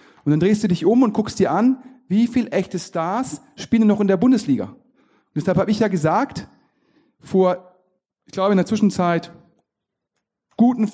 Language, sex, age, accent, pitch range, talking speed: German, male, 40-59, German, 170-215 Hz, 170 wpm